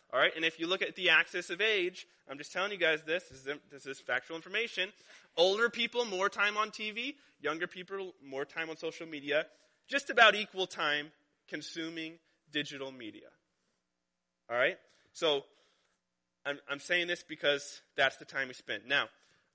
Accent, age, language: American, 20-39, English